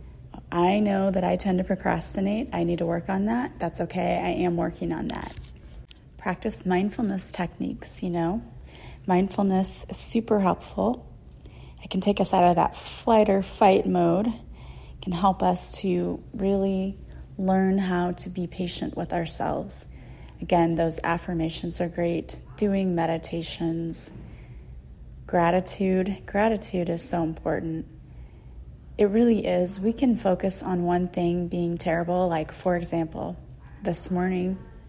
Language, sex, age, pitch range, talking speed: English, female, 30-49, 165-190 Hz, 140 wpm